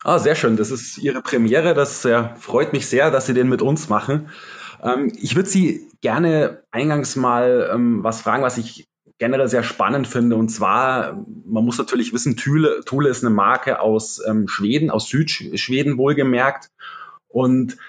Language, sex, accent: German, male, German